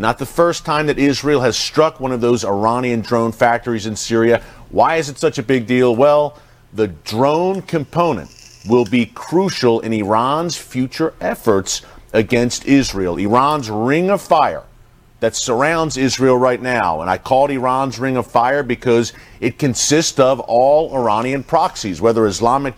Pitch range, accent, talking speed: 115-150 Hz, American, 160 wpm